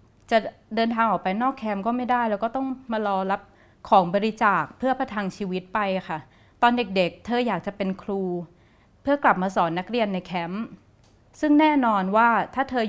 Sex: female